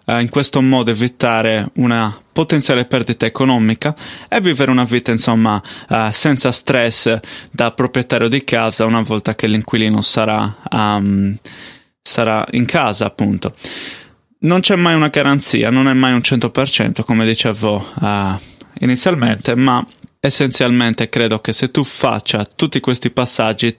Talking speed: 130 wpm